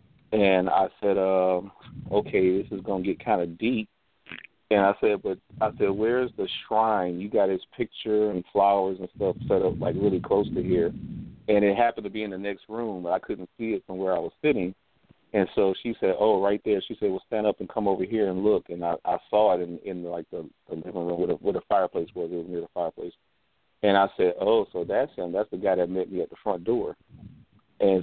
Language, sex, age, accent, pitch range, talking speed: English, male, 40-59, American, 95-110 Hz, 245 wpm